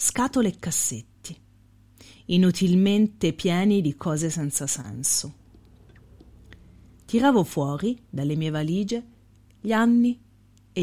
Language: Italian